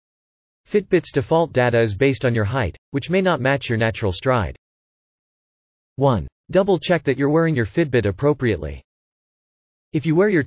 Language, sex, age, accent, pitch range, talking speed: English, male, 30-49, American, 110-155 Hz, 155 wpm